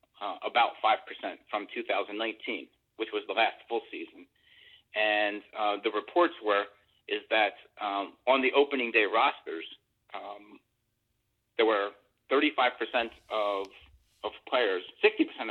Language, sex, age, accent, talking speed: English, male, 40-59, American, 135 wpm